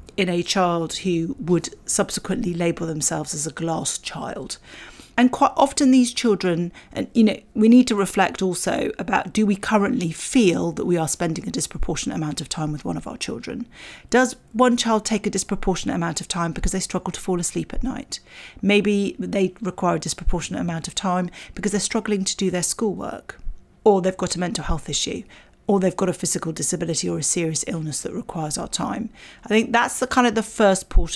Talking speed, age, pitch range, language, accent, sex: 205 wpm, 40-59, 170-215 Hz, English, British, female